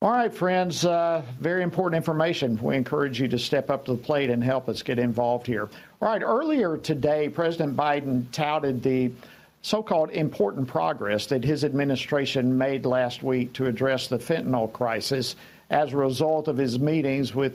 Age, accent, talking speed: 50-69, American, 175 wpm